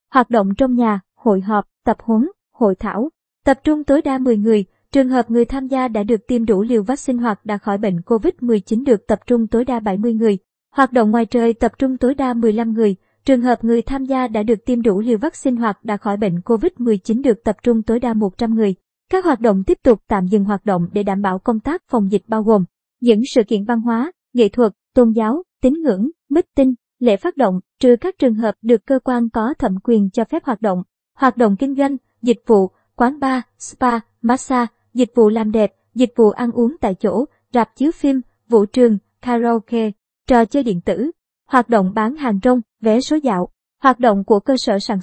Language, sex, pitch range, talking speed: Vietnamese, male, 220-260 Hz, 220 wpm